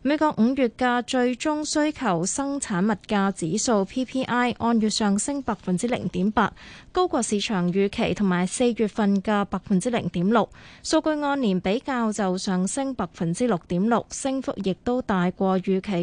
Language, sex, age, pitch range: Chinese, female, 20-39, 195-255 Hz